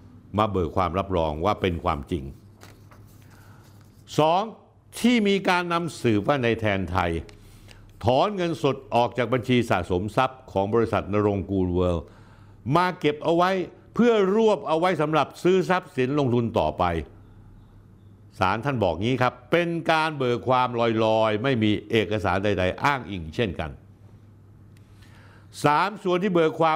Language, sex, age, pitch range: Thai, male, 60-79, 105-145 Hz